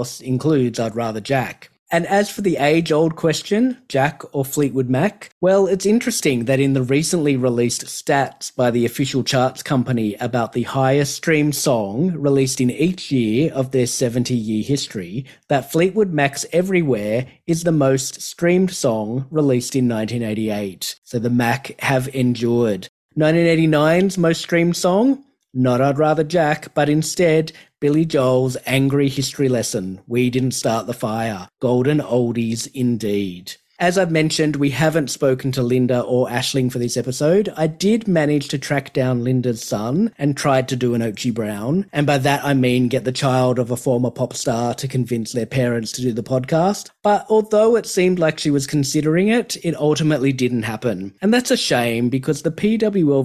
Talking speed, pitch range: 170 wpm, 125-160 Hz